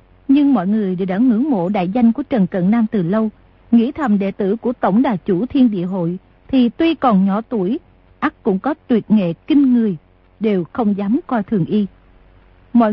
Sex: female